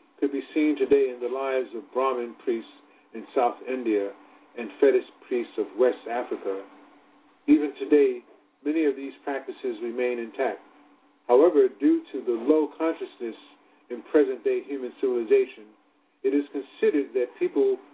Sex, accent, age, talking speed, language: male, American, 50-69, 140 wpm, English